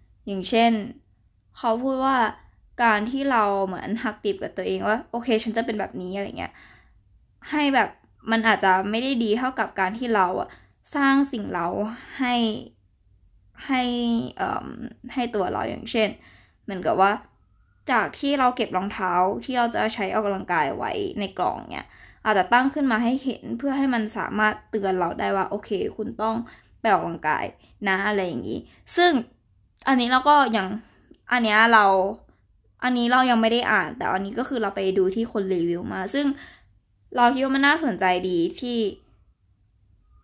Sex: female